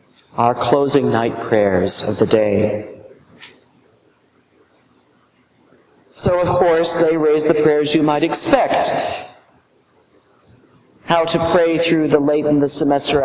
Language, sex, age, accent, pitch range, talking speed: English, male, 40-59, American, 130-170 Hz, 120 wpm